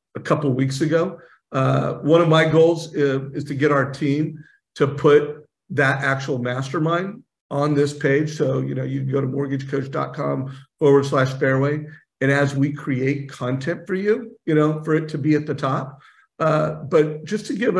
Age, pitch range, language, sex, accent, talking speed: 50-69, 140-165 Hz, English, male, American, 190 wpm